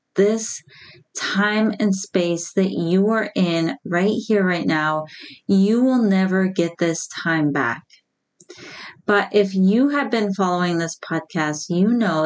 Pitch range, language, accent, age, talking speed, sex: 165-205 Hz, English, American, 30-49, 140 wpm, female